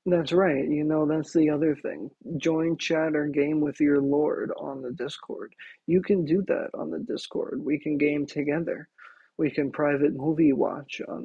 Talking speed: 185 wpm